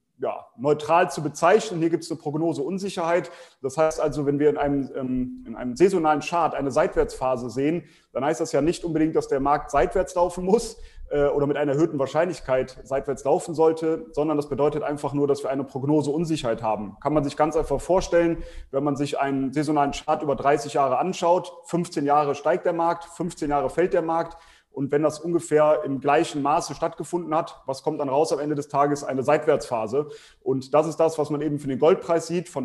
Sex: male